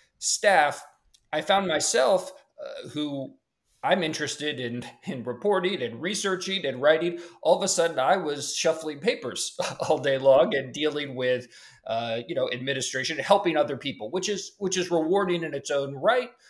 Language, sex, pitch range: English, male, 125-170 Hz